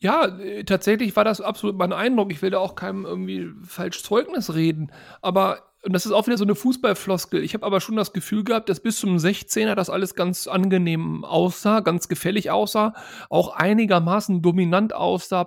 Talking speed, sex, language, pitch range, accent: 185 wpm, male, German, 180-220 Hz, German